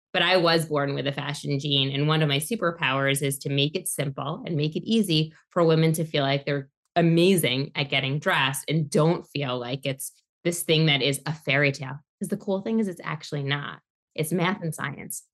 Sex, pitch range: female, 140-180 Hz